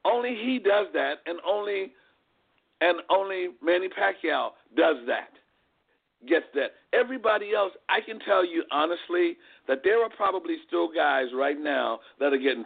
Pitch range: 145-225 Hz